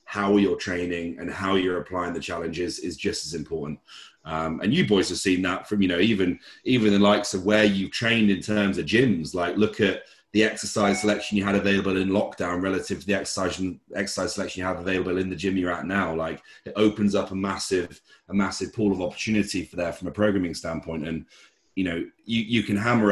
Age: 30-49